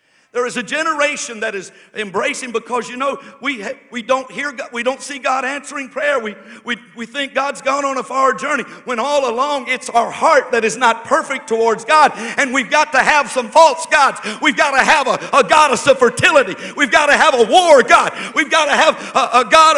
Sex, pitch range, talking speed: male, 210-285 Hz, 225 wpm